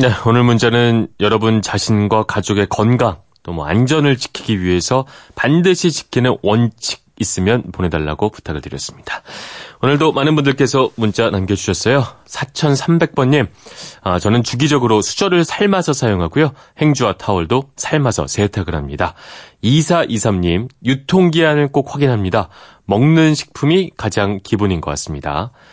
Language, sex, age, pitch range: Korean, male, 30-49, 95-145 Hz